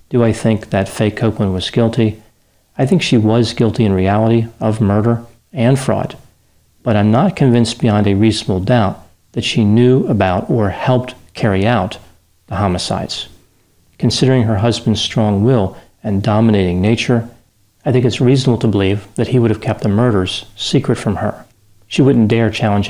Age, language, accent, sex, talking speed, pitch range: 40-59, English, American, male, 170 wpm, 100-120 Hz